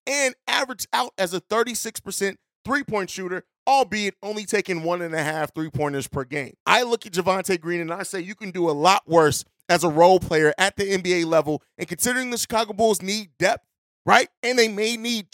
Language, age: English, 30-49